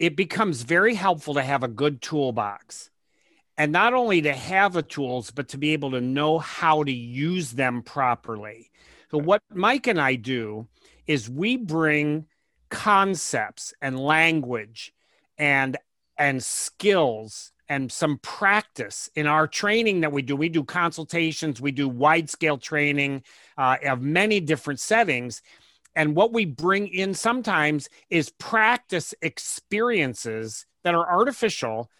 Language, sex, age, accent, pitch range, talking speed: English, male, 40-59, American, 135-180 Hz, 145 wpm